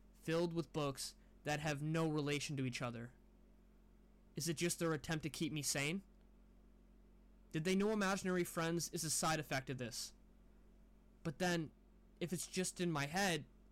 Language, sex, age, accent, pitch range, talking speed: English, male, 20-39, American, 160-205 Hz, 165 wpm